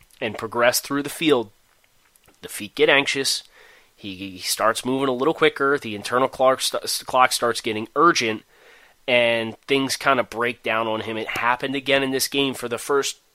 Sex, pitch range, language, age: male, 115-140 Hz, English, 30-49